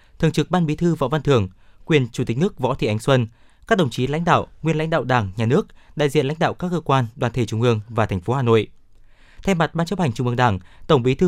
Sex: male